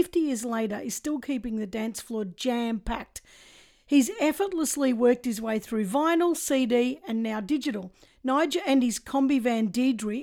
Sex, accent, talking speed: female, Australian, 160 wpm